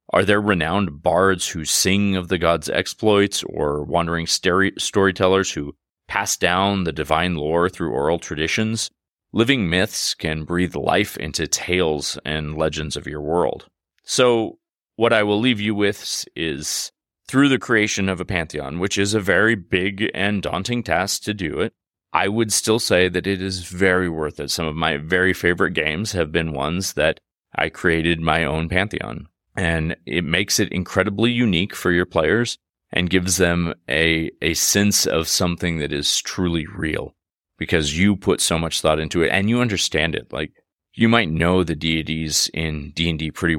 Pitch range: 80-100 Hz